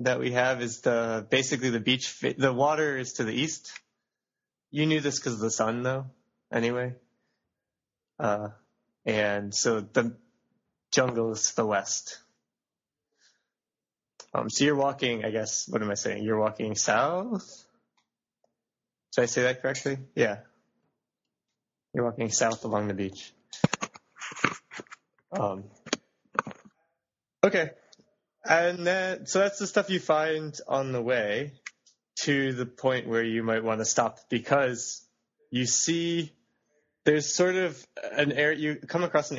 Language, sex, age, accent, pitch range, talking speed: English, male, 20-39, American, 115-150 Hz, 140 wpm